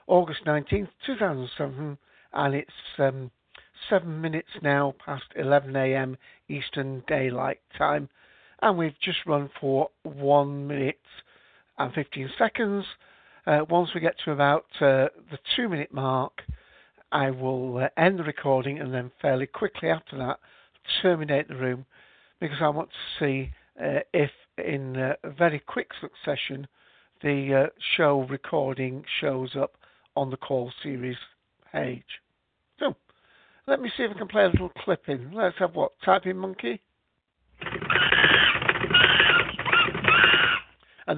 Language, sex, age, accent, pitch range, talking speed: English, male, 60-79, British, 135-160 Hz, 135 wpm